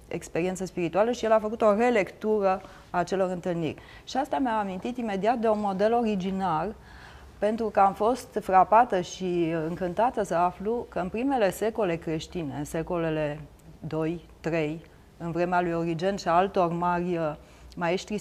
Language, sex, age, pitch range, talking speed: Romanian, female, 30-49, 165-205 Hz, 150 wpm